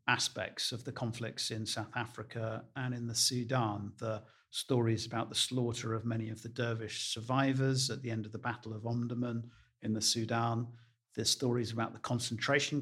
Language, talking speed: English, 180 wpm